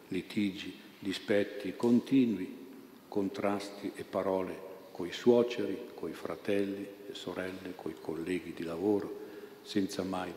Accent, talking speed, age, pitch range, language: native, 105 wpm, 50-69, 95-120 Hz, Italian